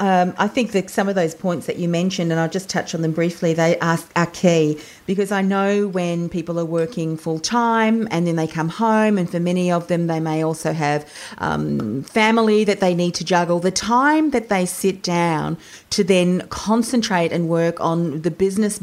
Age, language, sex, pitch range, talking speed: 40-59, English, female, 170-210 Hz, 210 wpm